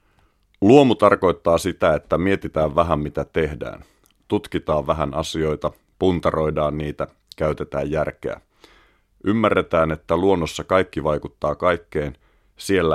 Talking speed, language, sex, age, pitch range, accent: 100 wpm, Finnish, male, 30-49, 75-90 Hz, native